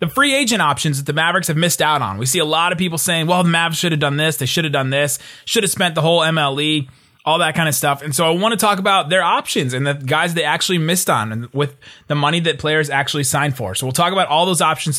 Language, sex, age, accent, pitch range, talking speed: English, male, 20-39, American, 145-185 Hz, 290 wpm